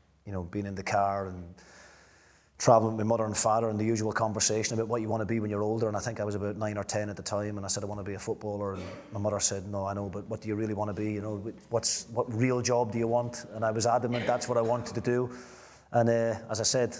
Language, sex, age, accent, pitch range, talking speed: English, male, 30-49, British, 105-115 Hz, 305 wpm